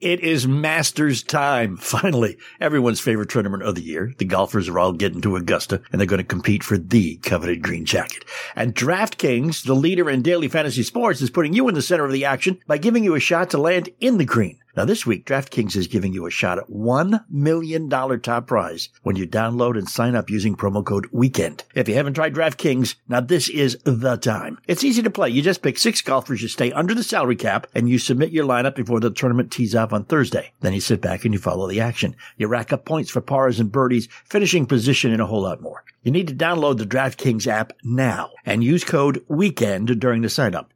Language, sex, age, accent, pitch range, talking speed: English, male, 60-79, American, 110-155 Hz, 230 wpm